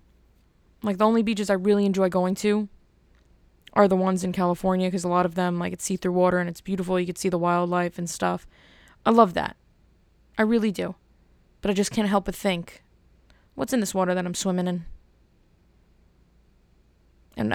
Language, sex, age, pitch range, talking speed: English, female, 20-39, 180-210 Hz, 190 wpm